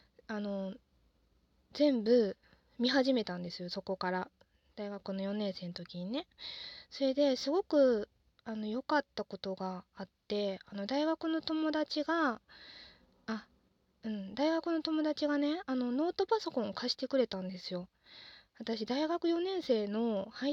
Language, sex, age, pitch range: Japanese, female, 20-39, 210-290 Hz